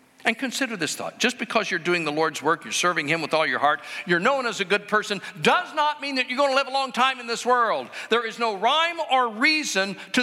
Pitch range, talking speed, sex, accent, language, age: 215-285 Hz, 265 wpm, male, American, English, 50-69